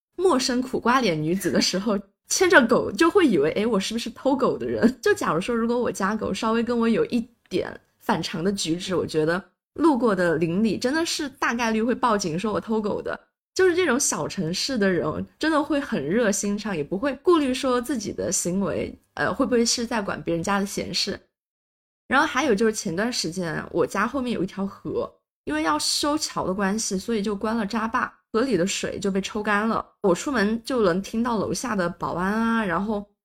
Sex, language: female, Chinese